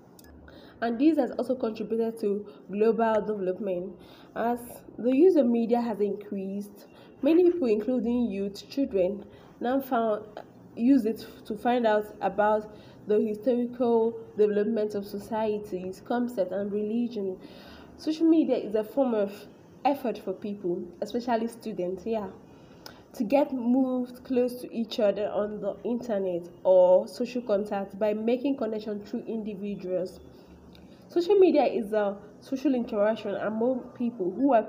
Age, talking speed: 10-29, 130 wpm